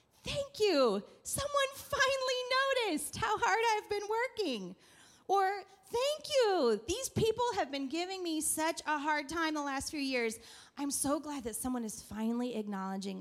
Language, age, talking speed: English, 30-49, 160 wpm